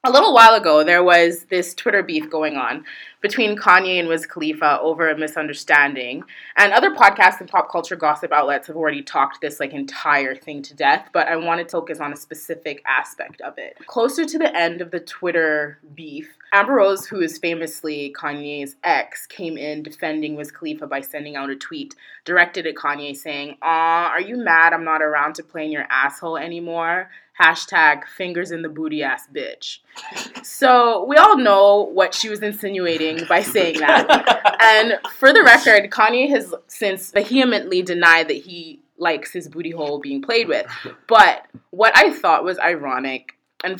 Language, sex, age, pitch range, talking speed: English, female, 20-39, 150-200 Hz, 180 wpm